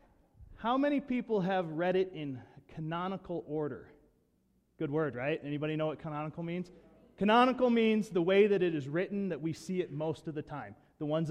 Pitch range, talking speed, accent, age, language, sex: 125-170 Hz, 185 wpm, American, 30-49, English, male